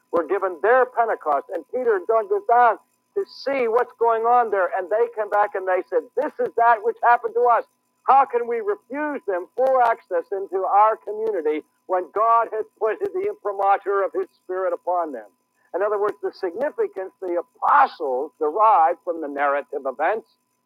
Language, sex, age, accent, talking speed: English, male, 50-69, American, 185 wpm